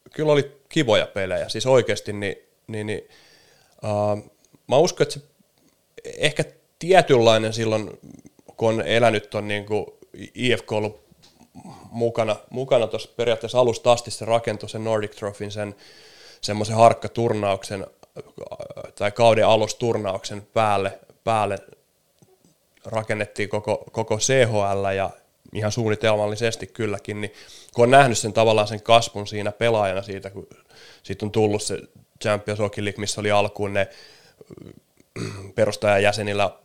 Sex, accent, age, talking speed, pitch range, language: male, native, 20-39, 125 wpm, 105-115 Hz, Finnish